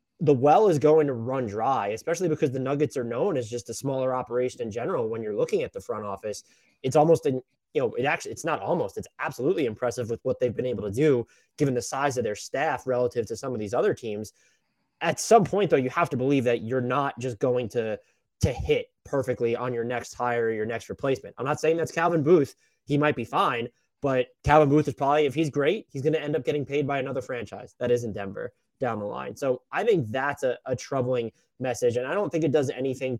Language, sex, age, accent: English, male, 20-39, American